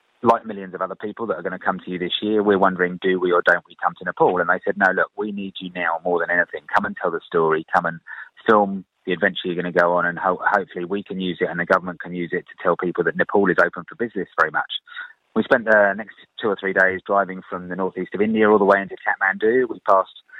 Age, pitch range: 30-49, 90-105 Hz